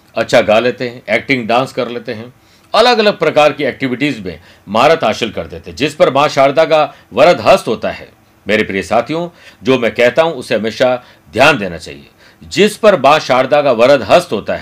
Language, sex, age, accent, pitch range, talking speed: Hindi, male, 60-79, native, 110-155 Hz, 200 wpm